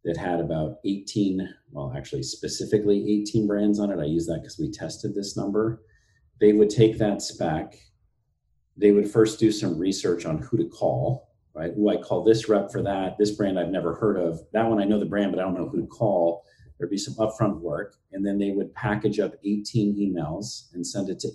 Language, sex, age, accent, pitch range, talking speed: English, male, 40-59, American, 85-105 Hz, 220 wpm